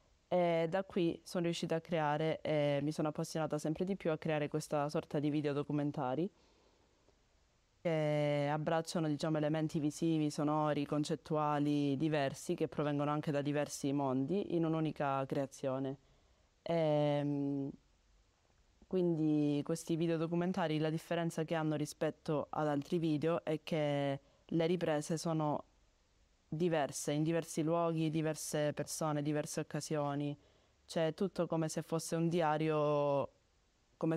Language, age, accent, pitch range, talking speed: Italian, 20-39, native, 145-160 Hz, 125 wpm